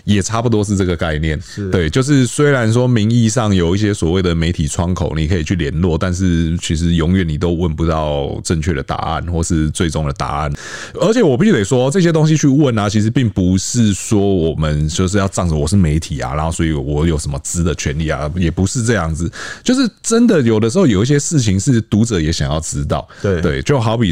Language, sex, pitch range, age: Chinese, male, 80-115 Hz, 30-49